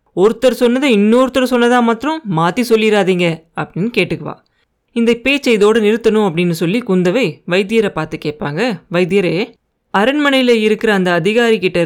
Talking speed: 120 wpm